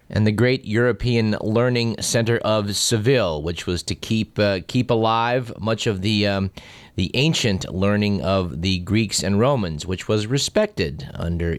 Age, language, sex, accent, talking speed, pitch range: 30-49, English, male, American, 160 wpm, 100-135 Hz